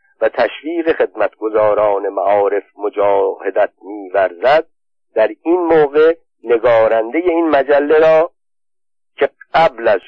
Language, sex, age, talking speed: Persian, male, 50-69, 95 wpm